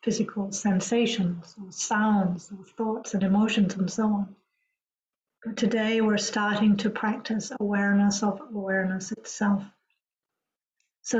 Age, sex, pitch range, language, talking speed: 50-69, female, 205-235 Hz, English, 120 wpm